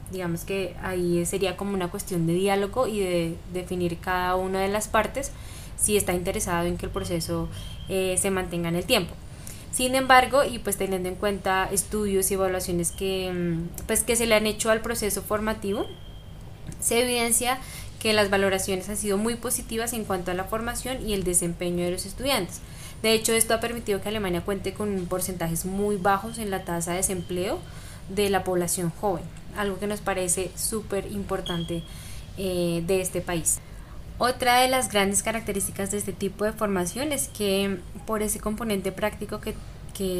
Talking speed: 175 wpm